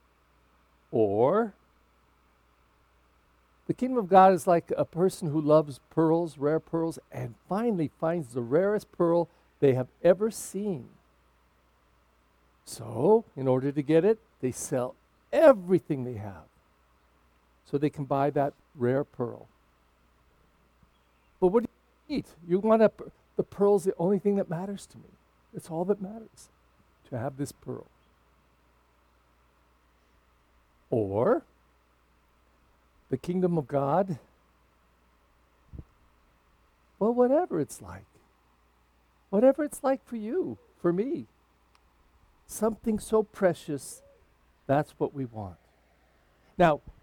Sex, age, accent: male, 60-79, American